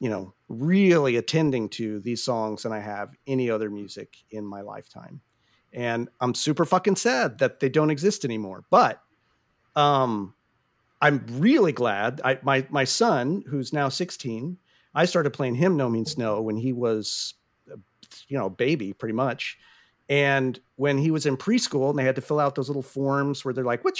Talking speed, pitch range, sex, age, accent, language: 185 wpm, 120-175 Hz, male, 50-69, American, English